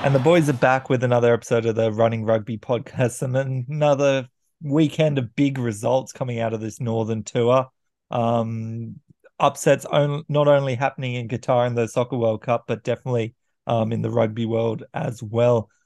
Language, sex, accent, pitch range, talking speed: English, male, Australian, 115-135 Hz, 180 wpm